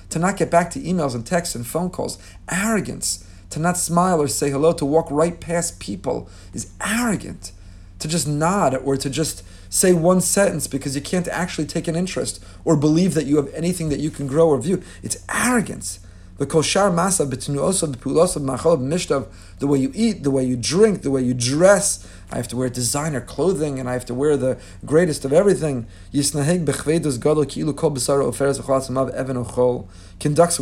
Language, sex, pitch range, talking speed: English, male, 125-165 Hz, 165 wpm